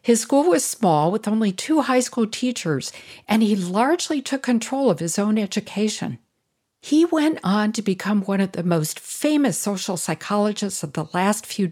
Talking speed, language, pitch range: 180 wpm, English, 175-250 Hz